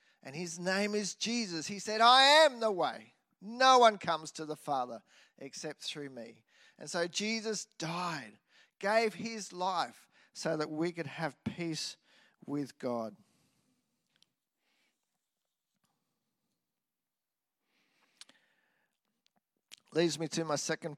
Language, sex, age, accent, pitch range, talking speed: English, male, 50-69, Australian, 165-240 Hz, 115 wpm